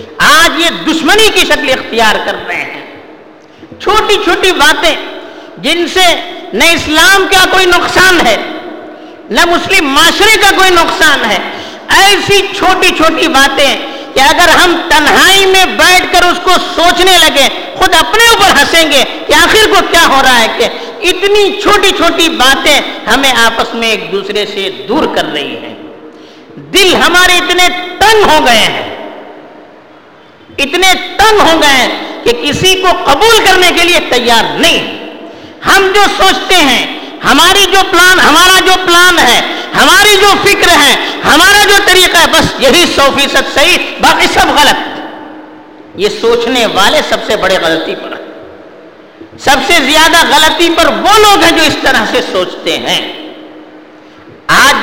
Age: 50-69